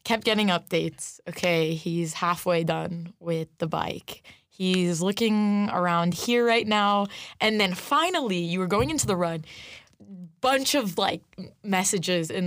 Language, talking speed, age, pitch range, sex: English, 145 wpm, 20-39, 175-235 Hz, female